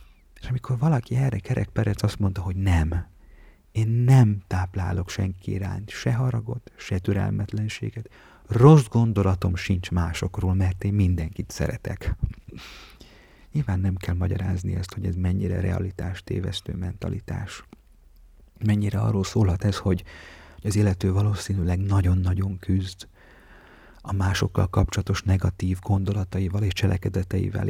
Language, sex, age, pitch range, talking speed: Hungarian, male, 30-49, 95-105 Hz, 115 wpm